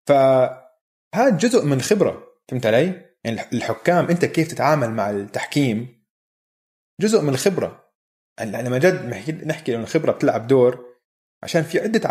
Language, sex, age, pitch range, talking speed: Arabic, male, 30-49, 125-180 Hz, 140 wpm